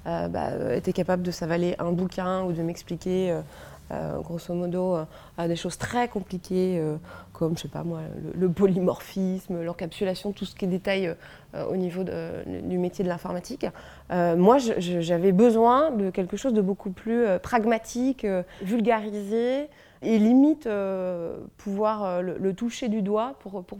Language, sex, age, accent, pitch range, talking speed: French, female, 20-39, French, 175-220 Hz, 190 wpm